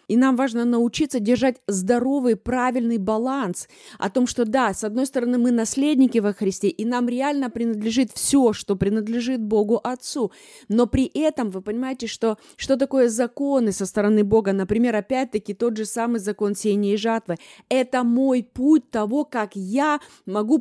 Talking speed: 165 wpm